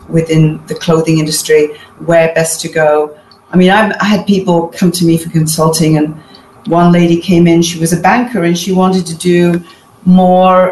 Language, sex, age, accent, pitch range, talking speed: English, female, 40-59, British, 165-190 Hz, 185 wpm